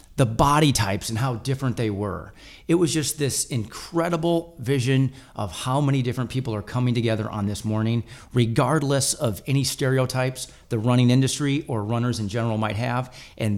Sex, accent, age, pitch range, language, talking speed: male, American, 40-59, 110-130 Hz, English, 170 wpm